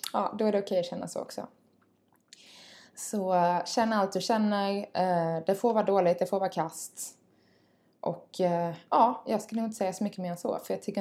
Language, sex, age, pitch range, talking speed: Swedish, female, 20-39, 175-205 Hz, 225 wpm